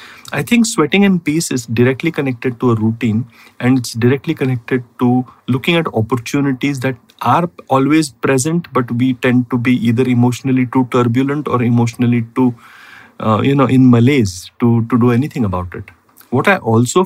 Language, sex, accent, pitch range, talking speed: English, male, Indian, 120-145 Hz, 170 wpm